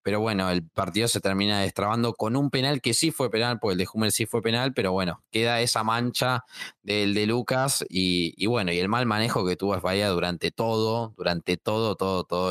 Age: 20-39